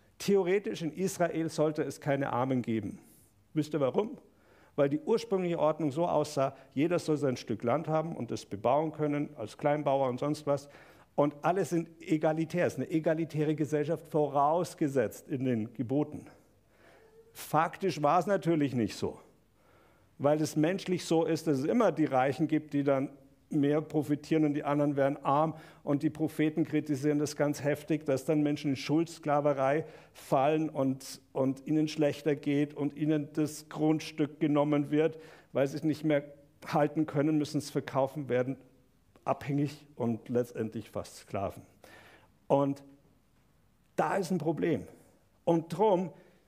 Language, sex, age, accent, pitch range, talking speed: German, male, 50-69, German, 140-160 Hz, 150 wpm